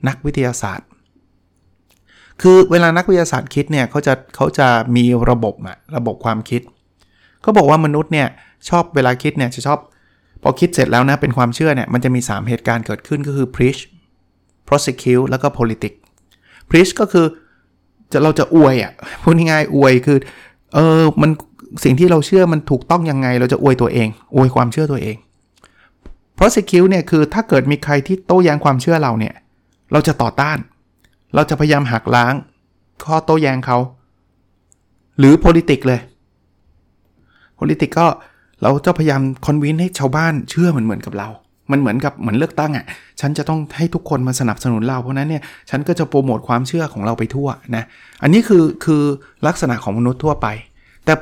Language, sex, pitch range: Thai, male, 115-155 Hz